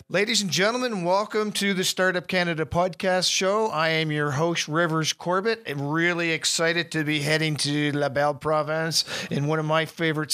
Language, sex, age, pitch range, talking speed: English, male, 50-69, 140-170 Hz, 180 wpm